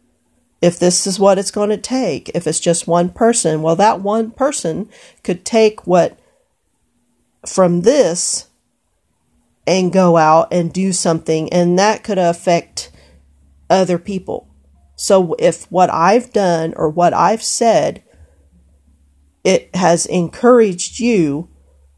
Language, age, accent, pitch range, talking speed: English, 40-59, American, 170-240 Hz, 130 wpm